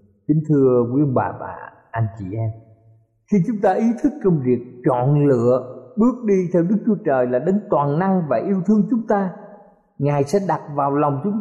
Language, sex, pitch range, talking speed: Vietnamese, male, 135-200 Hz, 200 wpm